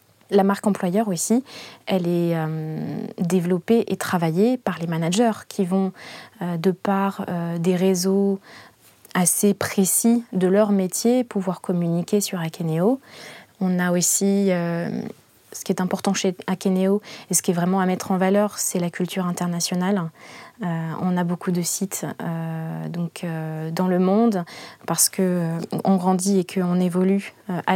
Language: French